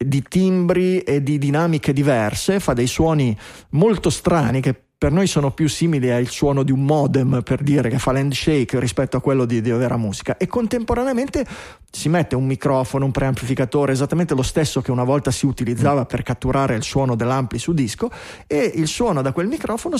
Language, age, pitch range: Italian, 30-49, 125-170 Hz